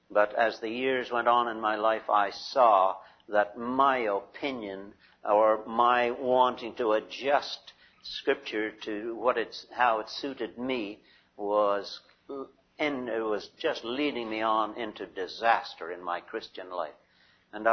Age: 60-79